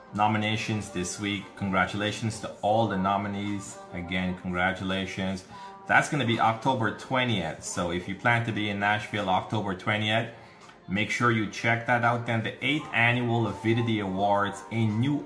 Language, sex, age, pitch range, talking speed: English, male, 30-49, 95-115 Hz, 155 wpm